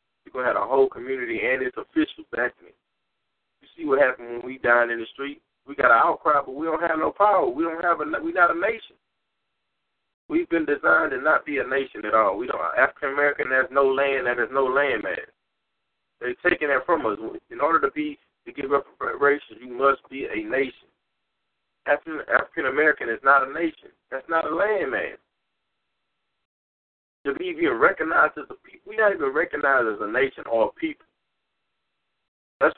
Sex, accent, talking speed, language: male, American, 200 wpm, English